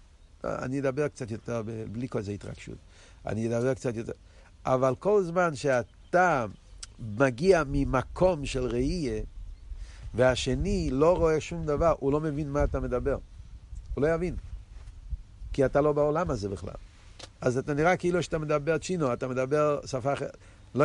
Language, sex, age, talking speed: Hebrew, male, 50-69, 130 wpm